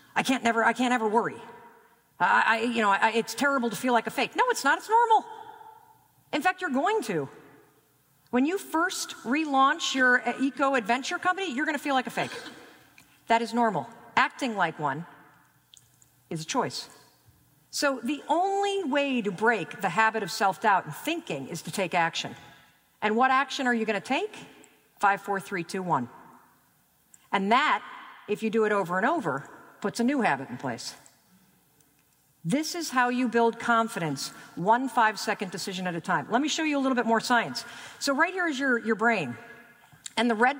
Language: English